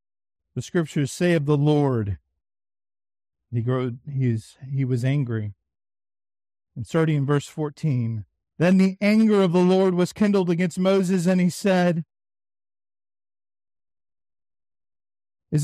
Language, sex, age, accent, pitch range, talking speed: English, male, 50-69, American, 100-155 Hz, 120 wpm